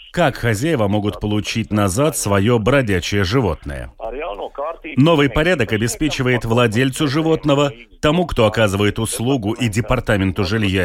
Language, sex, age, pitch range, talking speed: Russian, male, 30-49, 105-150 Hz, 110 wpm